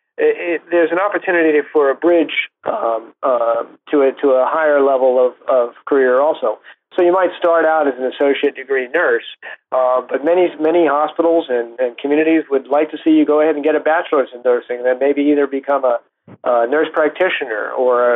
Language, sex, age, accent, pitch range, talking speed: English, male, 40-59, American, 130-160 Hz, 205 wpm